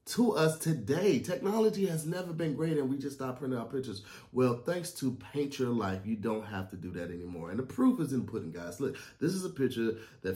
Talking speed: 245 wpm